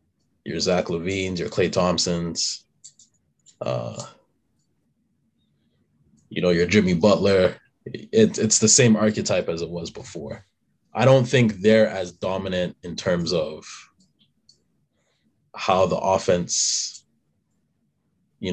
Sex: male